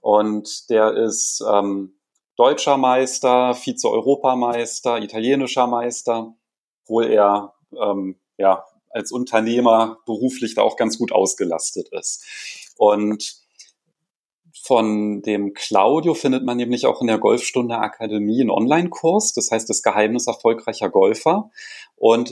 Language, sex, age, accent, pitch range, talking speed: German, male, 30-49, German, 105-130 Hz, 115 wpm